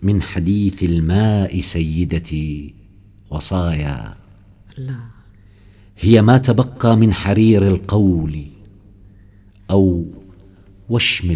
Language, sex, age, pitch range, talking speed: Arabic, male, 50-69, 85-100 Hz, 70 wpm